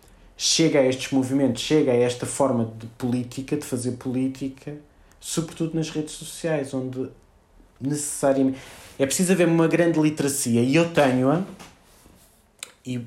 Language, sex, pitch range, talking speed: Portuguese, male, 130-165 Hz, 135 wpm